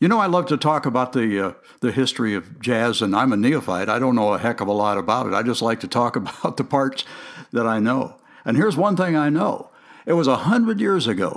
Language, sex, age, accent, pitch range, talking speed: English, male, 60-79, American, 125-180 Hz, 260 wpm